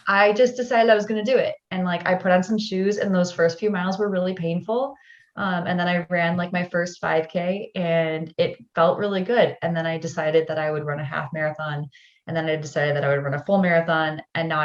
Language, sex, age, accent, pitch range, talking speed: English, female, 20-39, American, 150-180 Hz, 250 wpm